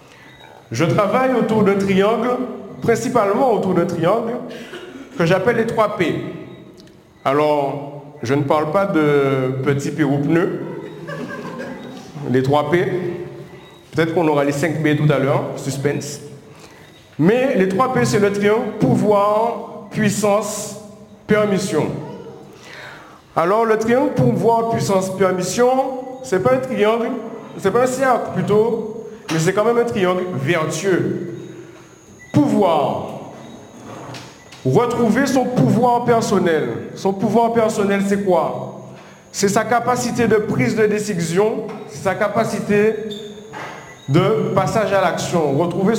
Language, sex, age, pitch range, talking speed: French, male, 50-69, 170-230 Hz, 115 wpm